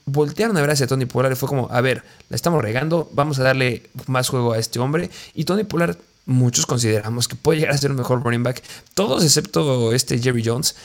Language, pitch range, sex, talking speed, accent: Spanish, 120-150 Hz, male, 225 wpm, Mexican